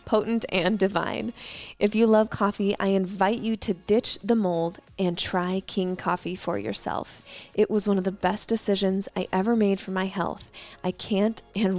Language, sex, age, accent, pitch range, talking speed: English, female, 20-39, American, 180-210 Hz, 185 wpm